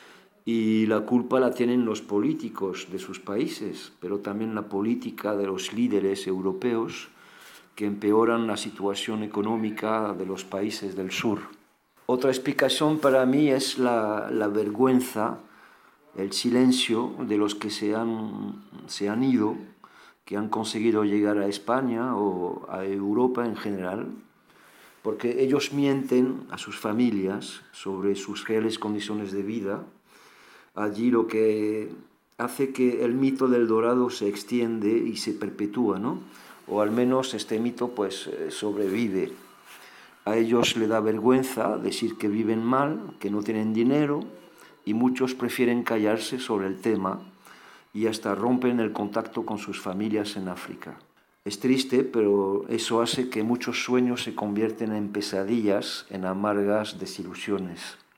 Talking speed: 140 wpm